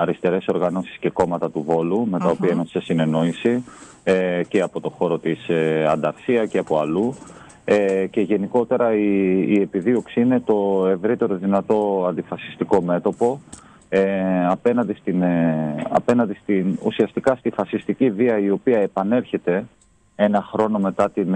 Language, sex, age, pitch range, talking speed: Greek, male, 30-49, 90-110 Hz, 145 wpm